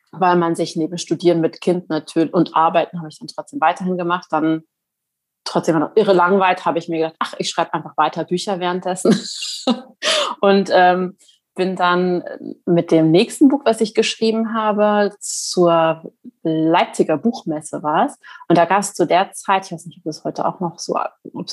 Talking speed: 185 wpm